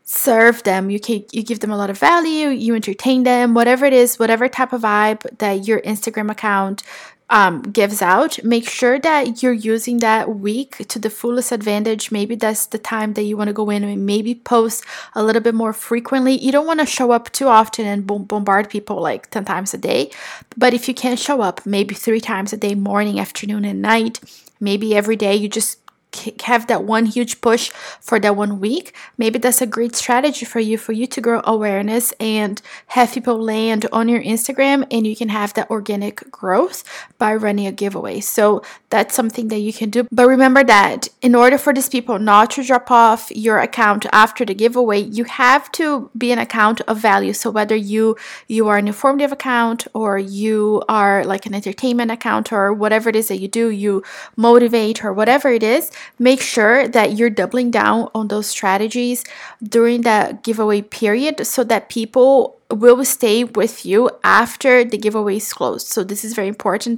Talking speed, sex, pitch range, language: 200 wpm, female, 210-245 Hz, English